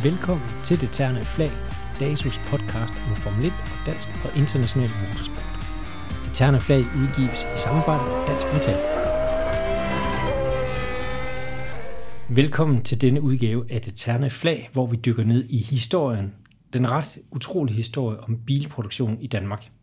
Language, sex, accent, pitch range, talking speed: Danish, male, native, 115-140 Hz, 130 wpm